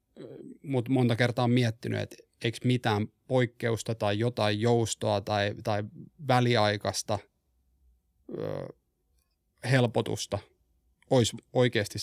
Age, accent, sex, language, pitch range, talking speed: 30-49, native, male, Finnish, 100-120 Hz, 90 wpm